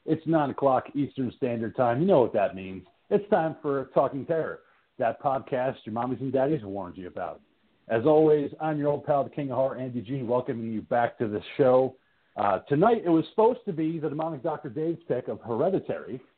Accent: American